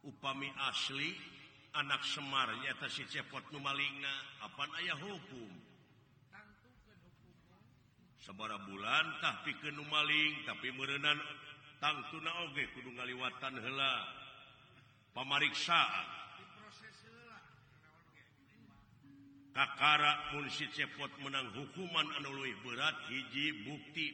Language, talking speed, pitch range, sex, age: Indonesian, 85 wpm, 130-145 Hz, male, 50-69